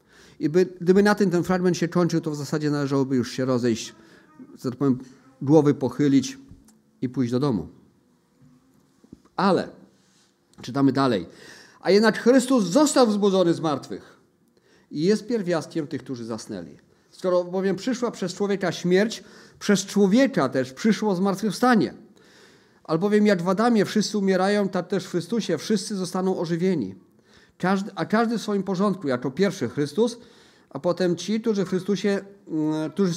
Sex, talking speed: male, 145 wpm